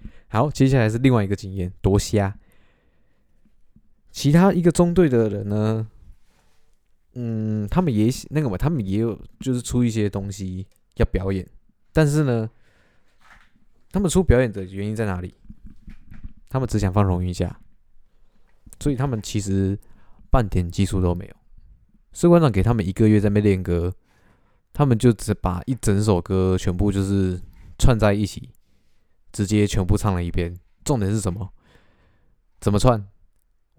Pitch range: 95-120 Hz